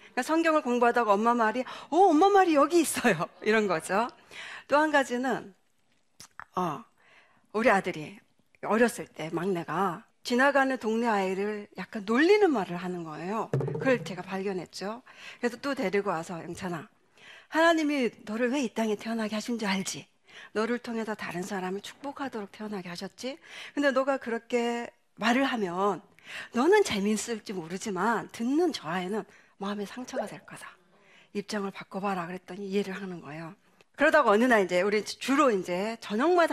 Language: Korean